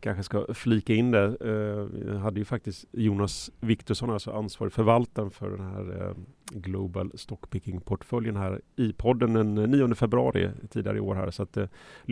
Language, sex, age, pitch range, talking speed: Swedish, male, 30-49, 95-115 Hz, 170 wpm